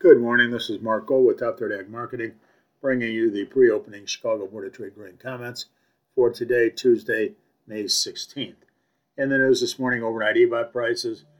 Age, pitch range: 50-69, 115-145 Hz